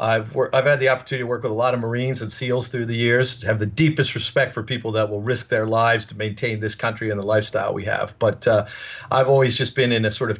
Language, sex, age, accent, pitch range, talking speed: English, male, 50-69, American, 110-130 Hz, 275 wpm